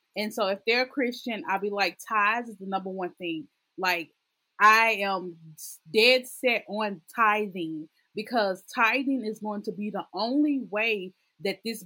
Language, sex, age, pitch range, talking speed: English, female, 30-49, 190-230 Hz, 165 wpm